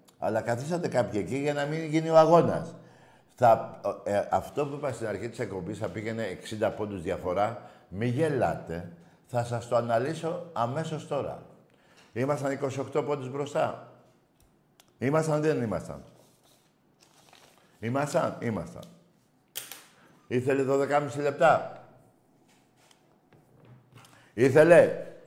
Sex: male